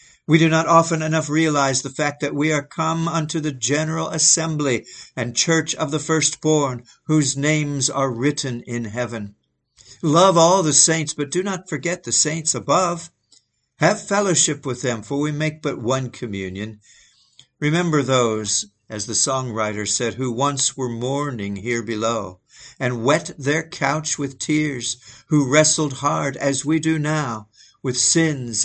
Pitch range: 120-155 Hz